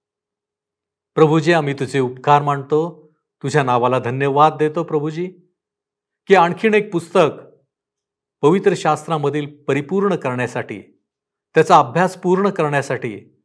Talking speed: 95 wpm